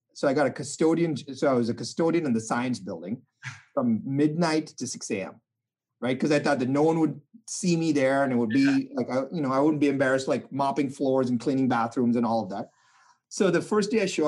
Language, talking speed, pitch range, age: English, 240 wpm, 130-185 Hz, 30-49